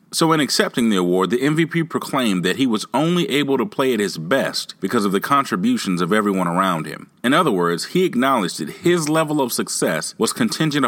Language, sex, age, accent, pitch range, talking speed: English, male, 40-59, American, 100-160 Hz, 210 wpm